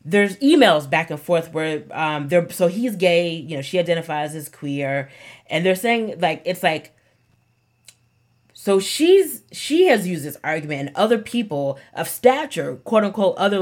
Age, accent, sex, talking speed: 30-49, American, female, 170 wpm